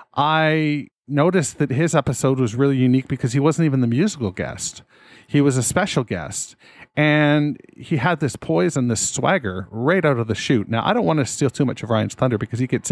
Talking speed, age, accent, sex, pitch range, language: 215 wpm, 40-59, American, male, 115-145 Hz, English